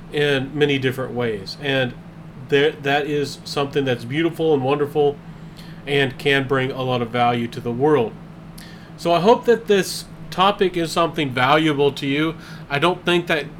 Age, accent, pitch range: 40-59, American, 140-165 Hz